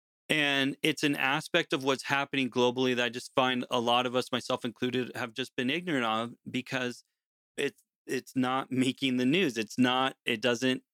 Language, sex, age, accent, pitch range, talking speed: English, male, 30-49, American, 120-135 Hz, 185 wpm